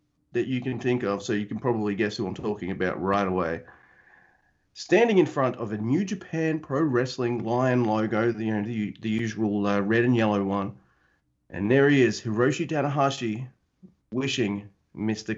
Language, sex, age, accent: English, male, 30-49, Australian